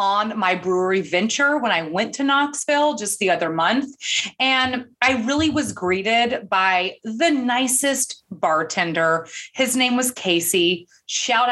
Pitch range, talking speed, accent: 185-245 Hz, 140 wpm, American